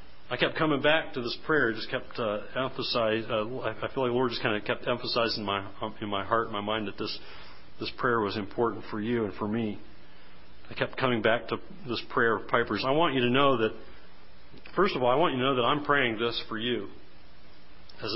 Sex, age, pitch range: male, 40-59, 115-145 Hz